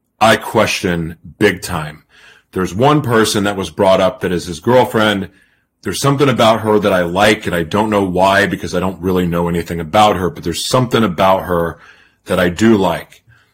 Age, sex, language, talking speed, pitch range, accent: 30-49, male, English, 195 wpm, 90-105 Hz, American